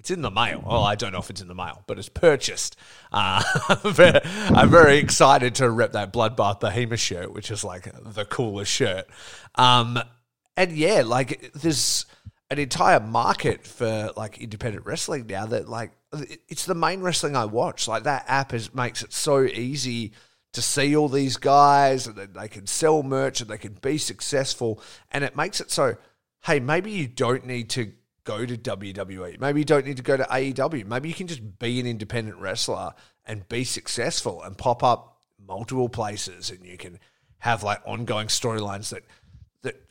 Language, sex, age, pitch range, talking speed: English, male, 30-49, 105-130 Hz, 185 wpm